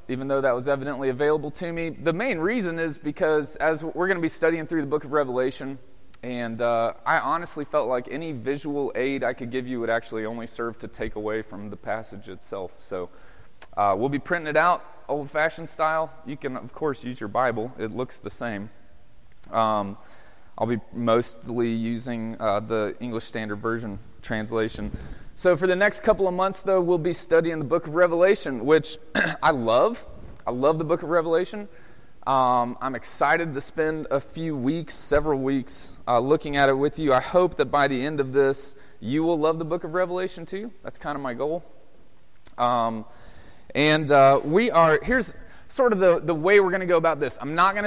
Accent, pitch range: American, 120-165 Hz